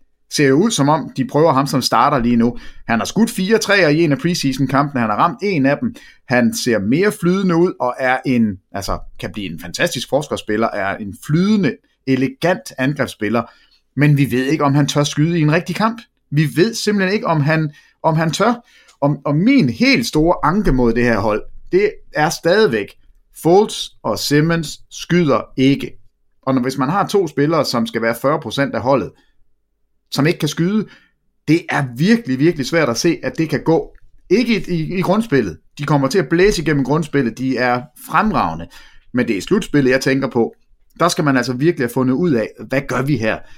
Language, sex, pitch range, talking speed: English, male, 125-170 Hz, 200 wpm